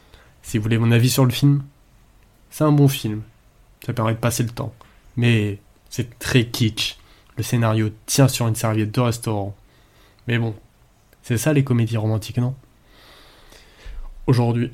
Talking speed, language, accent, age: 160 wpm, French, French, 20-39